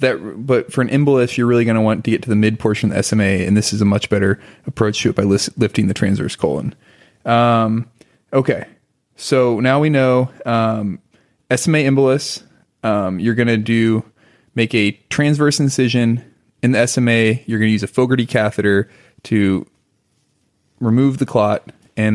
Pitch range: 105-130 Hz